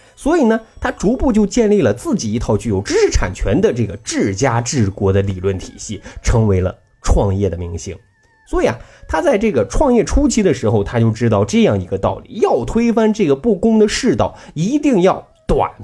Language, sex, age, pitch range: Chinese, male, 20-39, 105-175 Hz